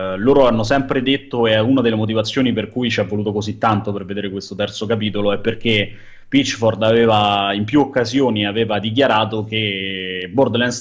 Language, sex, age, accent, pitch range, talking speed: Italian, male, 30-49, native, 105-125 Hz, 165 wpm